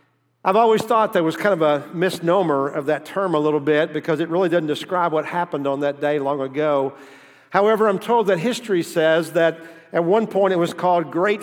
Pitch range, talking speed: 150-180 Hz, 215 wpm